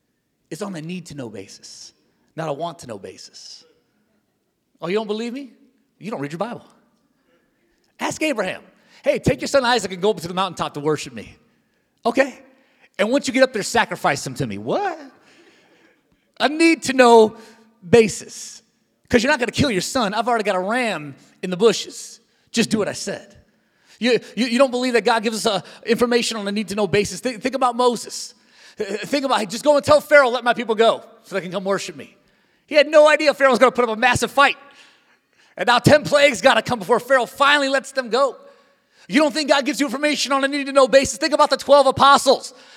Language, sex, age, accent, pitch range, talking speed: English, male, 30-49, American, 225-280 Hz, 210 wpm